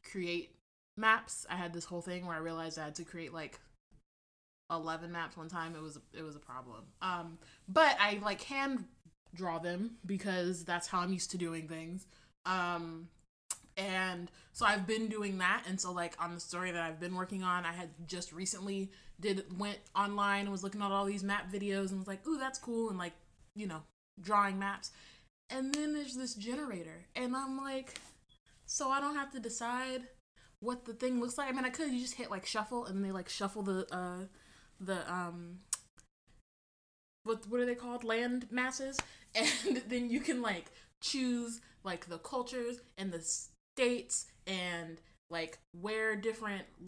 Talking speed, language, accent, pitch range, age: 185 wpm, English, American, 175-240 Hz, 20-39